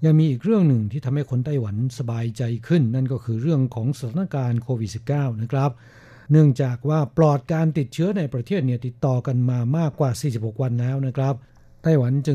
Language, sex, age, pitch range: Thai, male, 60-79, 125-150 Hz